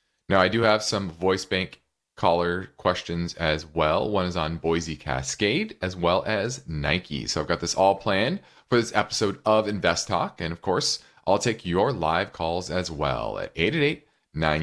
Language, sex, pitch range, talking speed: English, male, 85-115 Hz, 180 wpm